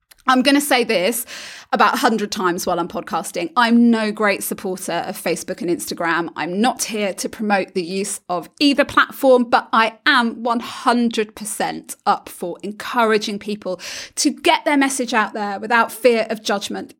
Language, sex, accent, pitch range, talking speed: English, female, British, 195-255 Hz, 165 wpm